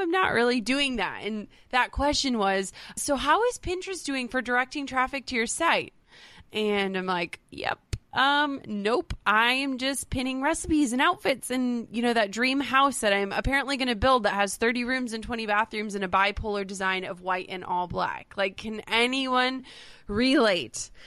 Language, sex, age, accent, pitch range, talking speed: English, female, 20-39, American, 205-265 Hz, 185 wpm